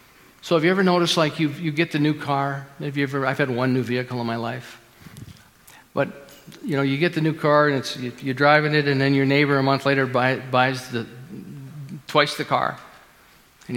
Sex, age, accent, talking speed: male, 50-69, American, 215 wpm